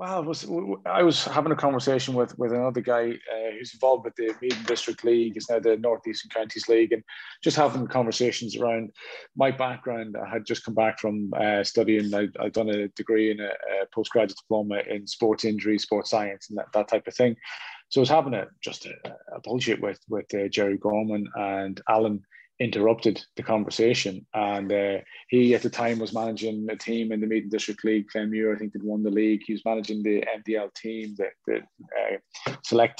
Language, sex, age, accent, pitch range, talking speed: English, male, 30-49, British, 105-120 Hz, 205 wpm